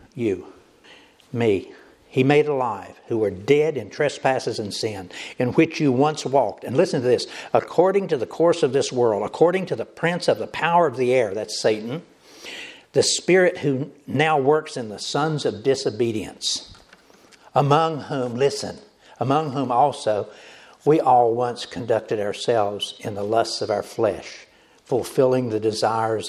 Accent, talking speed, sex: American, 160 wpm, male